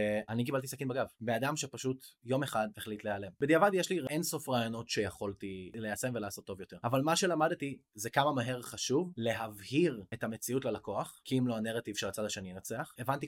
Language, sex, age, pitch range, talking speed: Hebrew, male, 20-39, 115-150 Hz, 185 wpm